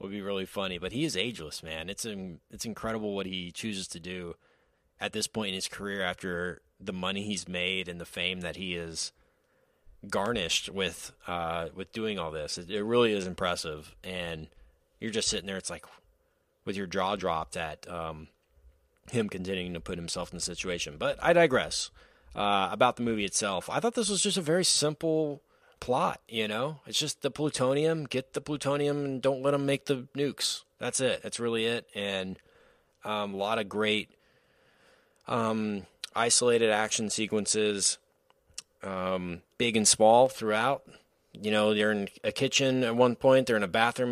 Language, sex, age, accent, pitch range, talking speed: English, male, 30-49, American, 95-120 Hz, 180 wpm